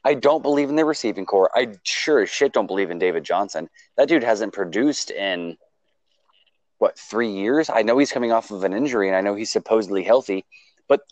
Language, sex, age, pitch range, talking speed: English, male, 20-39, 110-170 Hz, 210 wpm